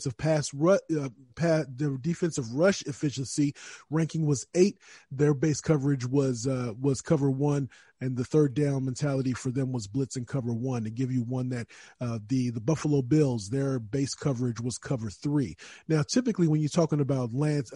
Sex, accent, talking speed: male, American, 180 wpm